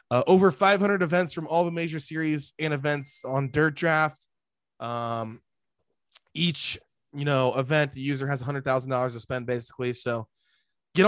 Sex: male